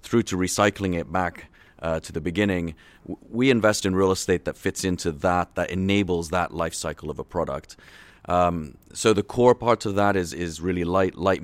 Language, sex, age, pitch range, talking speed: Danish, male, 30-49, 85-100 Hz, 200 wpm